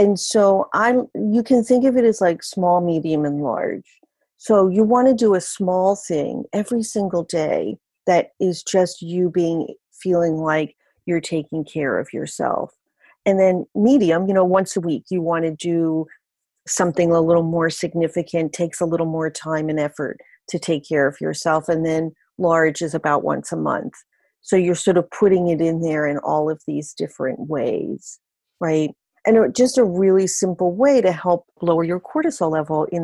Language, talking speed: English, 185 wpm